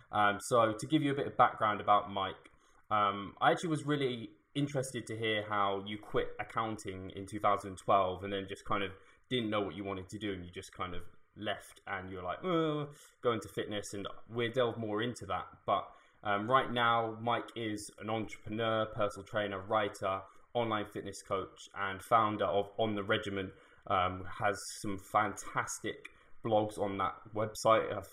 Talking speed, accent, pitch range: 180 wpm, British, 95-110 Hz